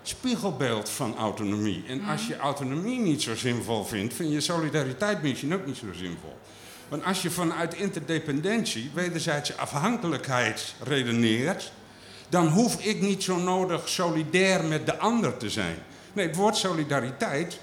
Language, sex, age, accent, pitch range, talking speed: Dutch, male, 50-69, Dutch, 125-185 Hz, 145 wpm